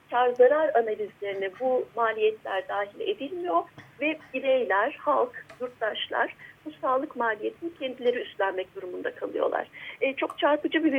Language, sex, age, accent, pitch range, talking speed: Turkish, female, 40-59, native, 235-340 Hz, 120 wpm